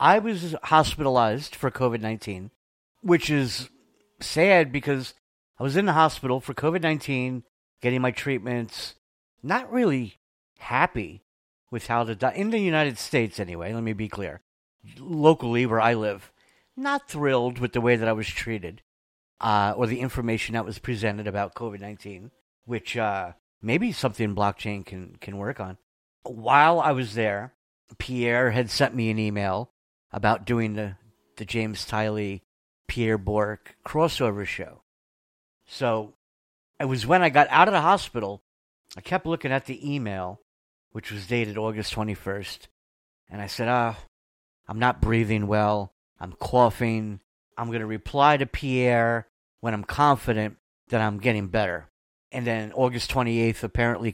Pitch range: 105-130 Hz